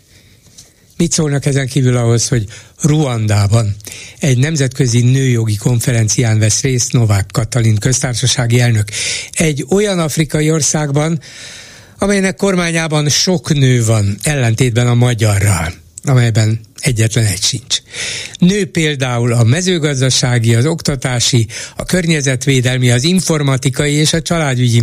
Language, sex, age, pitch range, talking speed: Hungarian, male, 60-79, 115-150 Hz, 110 wpm